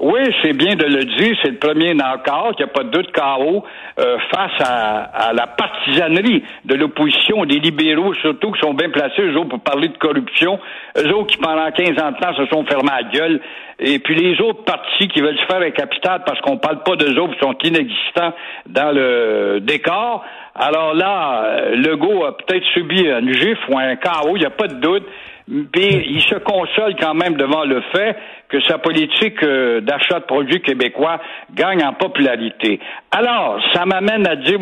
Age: 60-79